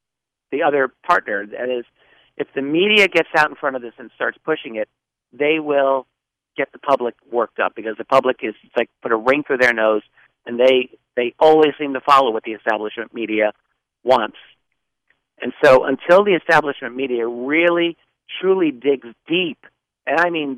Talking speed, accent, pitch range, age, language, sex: 180 wpm, American, 120-155 Hz, 50-69, English, male